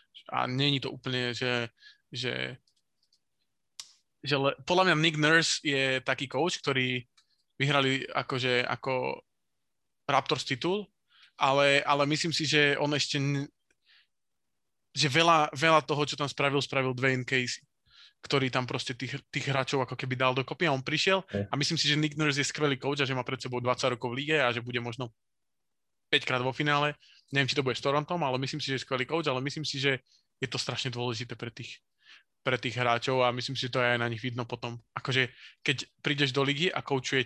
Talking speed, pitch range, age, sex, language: 195 wpm, 125-145 Hz, 20-39, male, Slovak